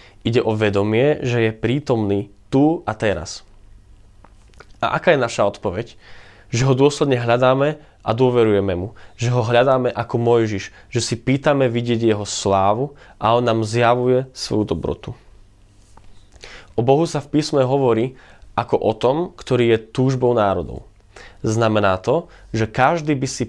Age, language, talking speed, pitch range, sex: 20-39, Slovak, 145 wpm, 105-135 Hz, male